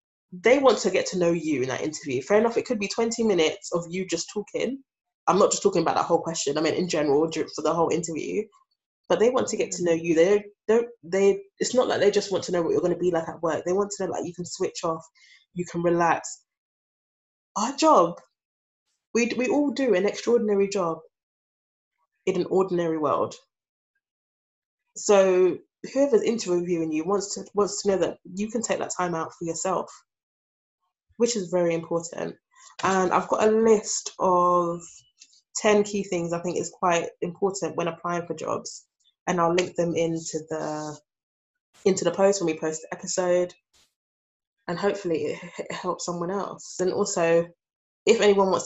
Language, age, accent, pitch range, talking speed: English, 20-39, British, 170-205 Hz, 190 wpm